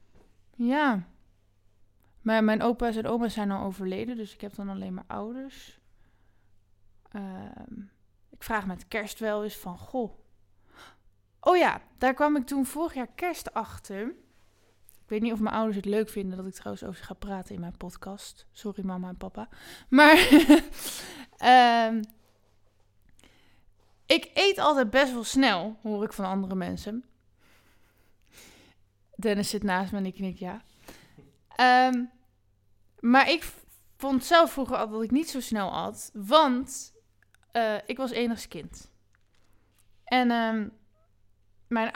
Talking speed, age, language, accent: 140 wpm, 20-39, Dutch, Dutch